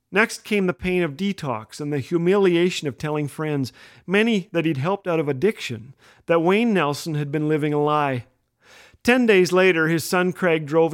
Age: 40-59